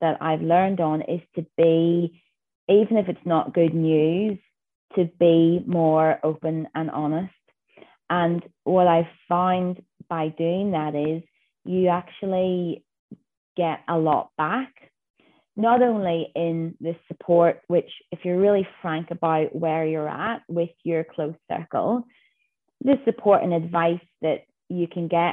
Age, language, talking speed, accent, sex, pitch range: 20-39, English, 140 wpm, British, female, 160-195 Hz